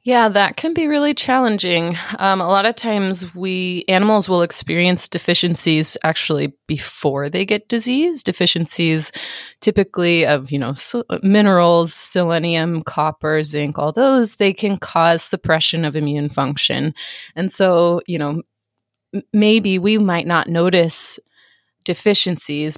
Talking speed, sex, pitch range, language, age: 130 wpm, female, 155-200 Hz, English, 20-39